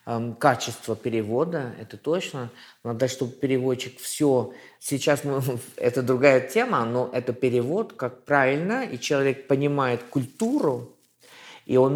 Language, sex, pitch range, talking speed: Ukrainian, male, 125-165 Hz, 120 wpm